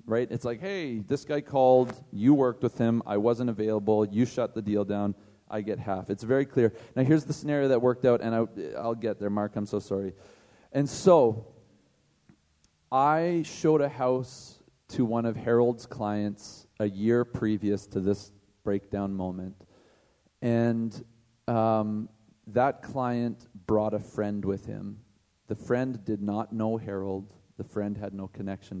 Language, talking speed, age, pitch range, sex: English, 165 wpm, 40-59, 105-130 Hz, male